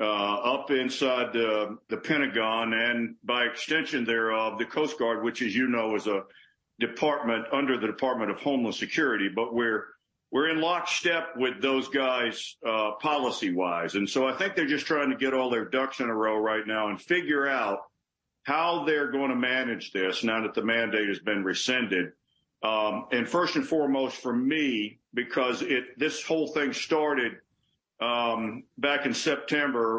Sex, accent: male, American